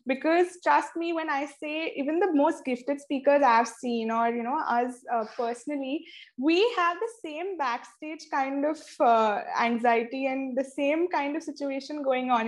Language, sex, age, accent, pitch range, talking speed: English, female, 20-39, Indian, 235-300 Hz, 175 wpm